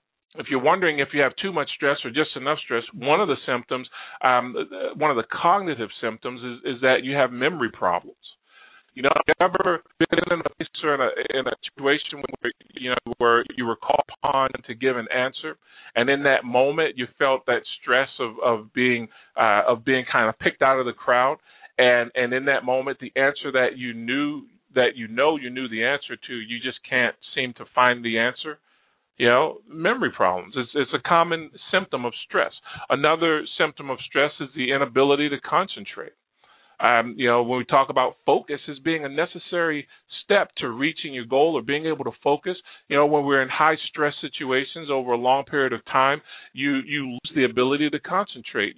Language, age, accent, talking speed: English, 40-59, American, 200 wpm